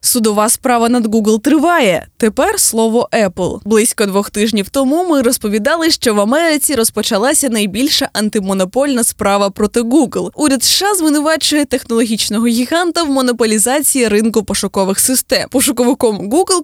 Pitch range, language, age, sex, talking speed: 215-295 Hz, Ukrainian, 20-39, female, 125 wpm